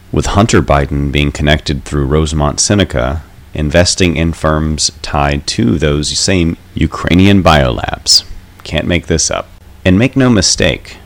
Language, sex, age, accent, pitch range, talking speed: English, male, 30-49, American, 75-95 Hz, 135 wpm